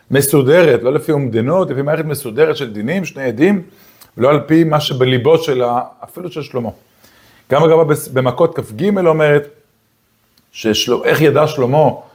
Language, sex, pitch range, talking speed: Hebrew, male, 120-165 Hz, 150 wpm